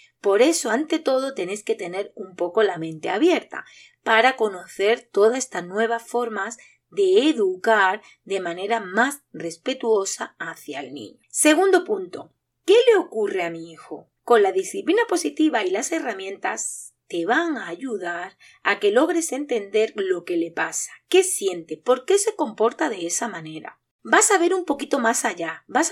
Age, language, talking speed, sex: 30-49, Spanish, 165 wpm, female